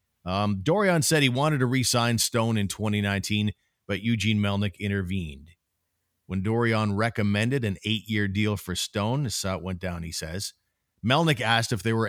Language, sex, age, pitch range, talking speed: English, male, 40-59, 100-130 Hz, 170 wpm